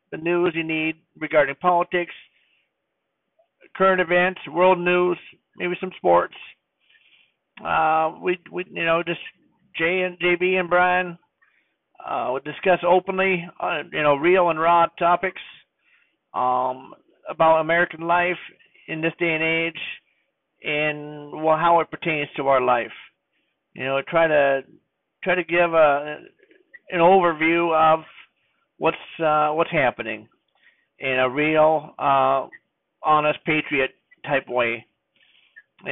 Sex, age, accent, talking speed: male, 50-69, American, 125 wpm